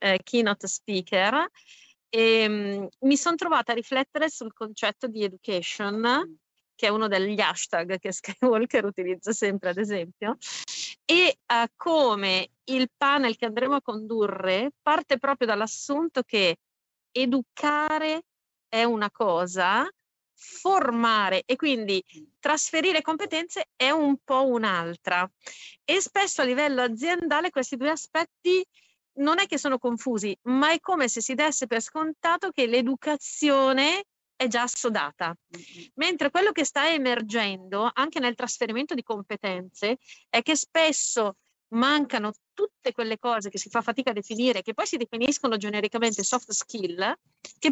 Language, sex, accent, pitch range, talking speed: Italian, female, native, 215-290 Hz, 130 wpm